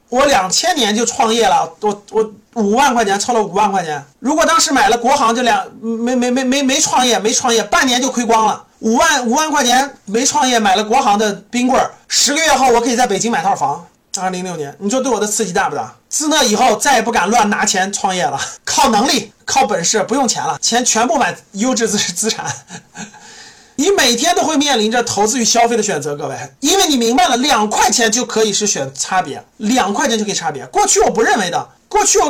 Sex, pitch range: male, 220-370 Hz